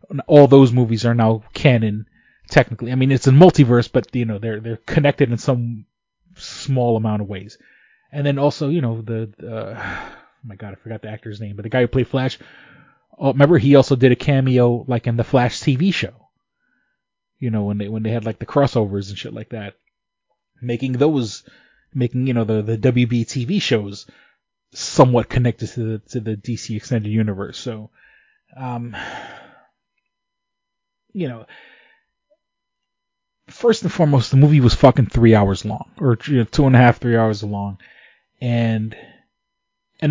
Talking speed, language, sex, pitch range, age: 175 wpm, English, male, 115-140 Hz, 20-39